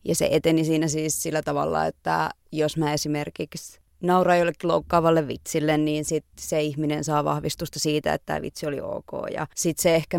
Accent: native